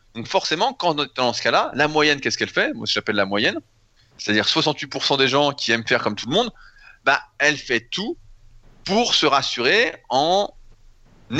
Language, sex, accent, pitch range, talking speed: French, male, French, 120-165 Hz, 190 wpm